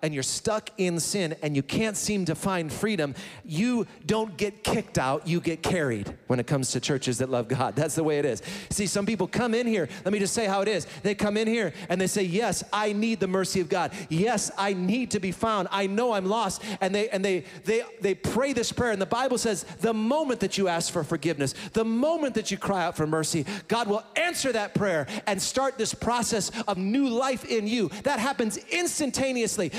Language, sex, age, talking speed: English, male, 40-59, 230 wpm